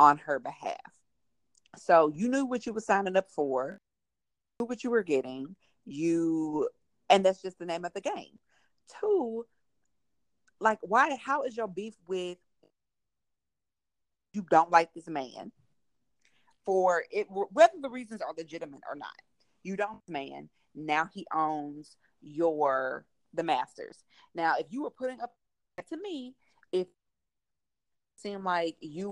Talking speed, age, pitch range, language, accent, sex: 145 wpm, 40-59, 160-230 Hz, English, American, female